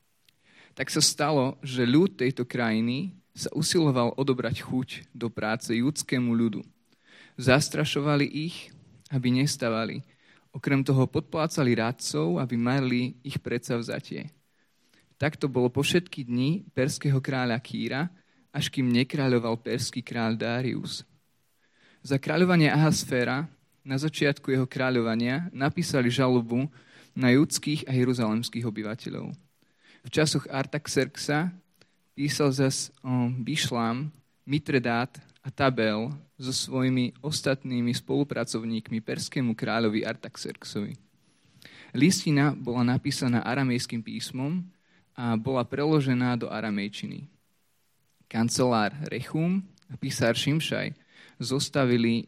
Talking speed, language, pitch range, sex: 100 wpm, Slovak, 120-145 Hz, male